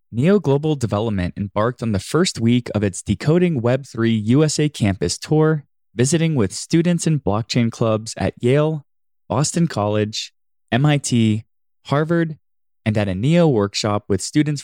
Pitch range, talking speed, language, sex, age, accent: 105-160 Hz, 140 wpm, English, male, 20-39, American